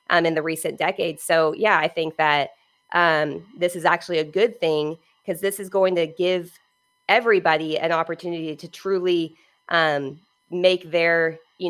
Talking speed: 165 wpm